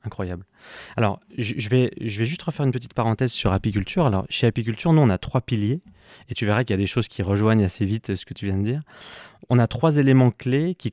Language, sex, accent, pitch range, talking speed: French, male, French, 100-130 Hz, 245 wpm